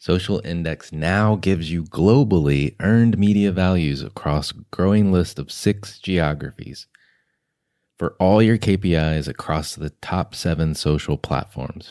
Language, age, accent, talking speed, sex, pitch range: English, 30-49, American, 130 wpm, male, 80-100 Hz